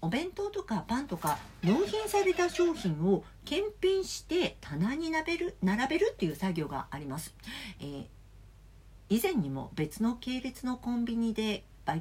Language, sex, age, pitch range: Japanese, female, 50-69, 160-250 Hz